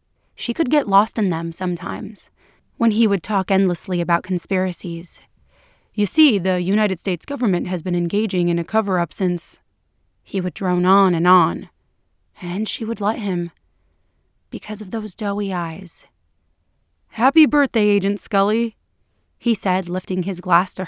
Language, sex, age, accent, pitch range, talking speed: English, female, 30-49, American, 170-205 Hz, 150 wpm